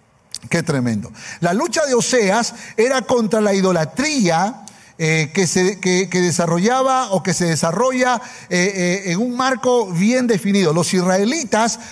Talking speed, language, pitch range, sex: 145 wpm, Spanish, 175-235 Hz, male